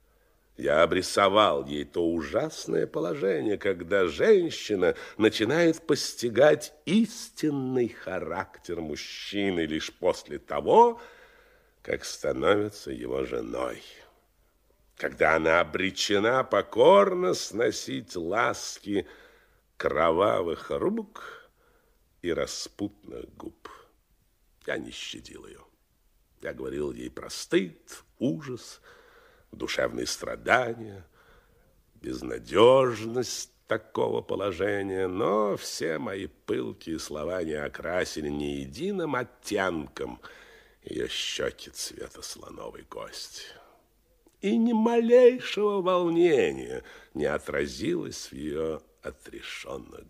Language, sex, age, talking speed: Russian, male, 60-79, 85 wpm